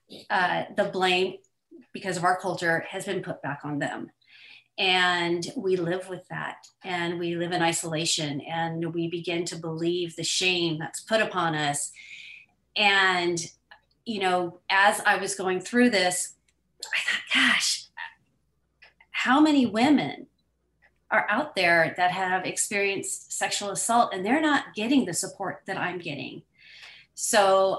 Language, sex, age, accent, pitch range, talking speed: English, female, 40-59, American, 170-205 Hz, 145 wpm